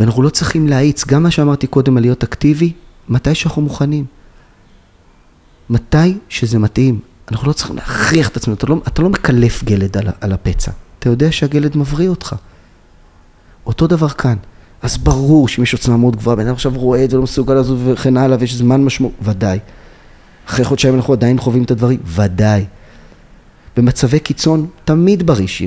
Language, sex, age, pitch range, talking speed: Hebrew, male, 30-49, 95-140 Hz, 165 wpm